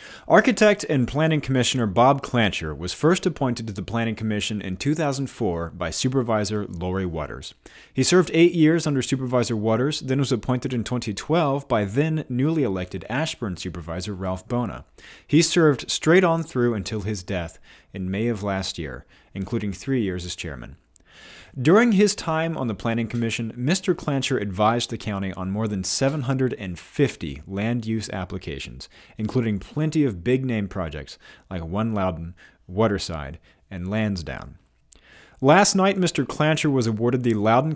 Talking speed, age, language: 145 wpm, 30-49, English